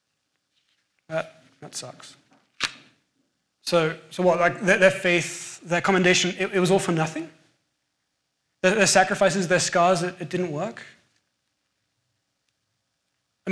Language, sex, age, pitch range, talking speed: English, male, 20-39, 145-180 Hz, 125 wpm